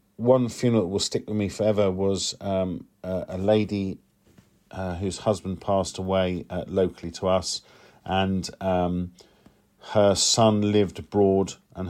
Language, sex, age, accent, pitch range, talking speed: English, male, 40-59, British, 95-110 Hz, 145 wpm